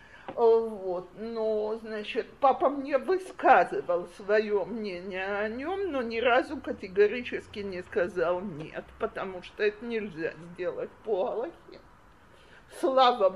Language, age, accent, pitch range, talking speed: Russian, 50-69, native, 195-295 Hz, 110 wpm